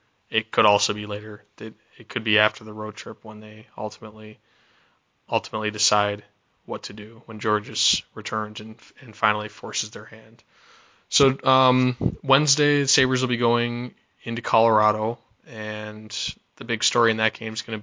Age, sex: 20-39, male